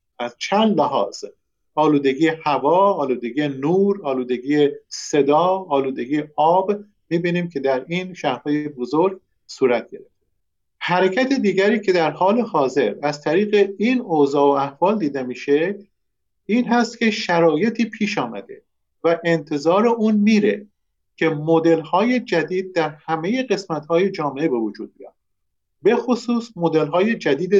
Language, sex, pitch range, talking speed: Persian, male, 155-215 Hz, 120 wpm